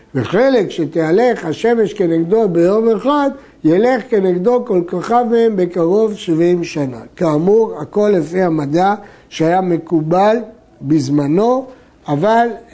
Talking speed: 100 wpm